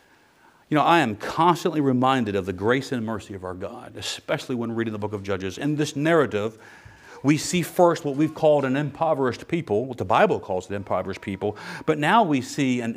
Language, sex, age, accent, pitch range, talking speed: English, male, 40-59, American, 125-175 Hz, 210 wpm